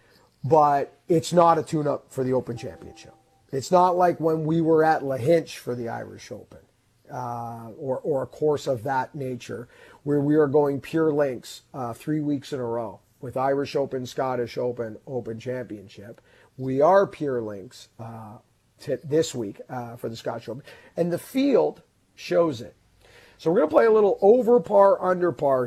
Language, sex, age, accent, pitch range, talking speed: English, male, 40-59, American, 120-150 Hz, 180 wpm